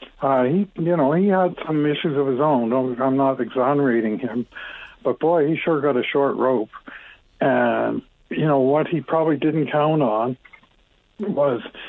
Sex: male